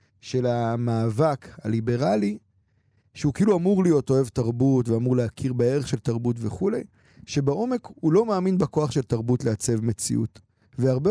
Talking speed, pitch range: 135 wpm, 120-160 Hz